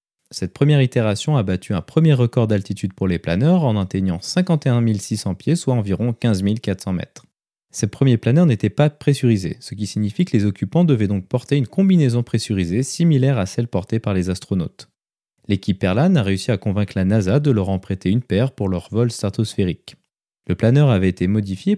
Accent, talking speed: French, 195 wpm